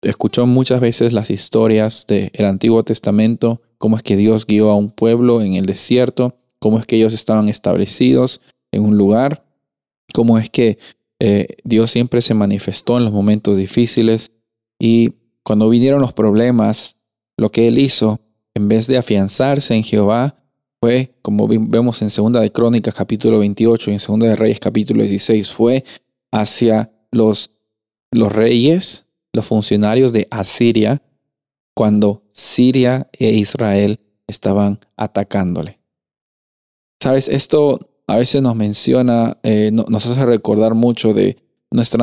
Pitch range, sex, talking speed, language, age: 105-120 Hz, male, 140 wpm, Spanish, 30-49